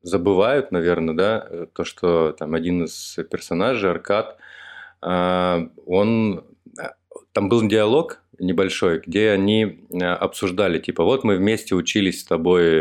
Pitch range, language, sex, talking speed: 85-95 Hz, Russian, male, 115 wpm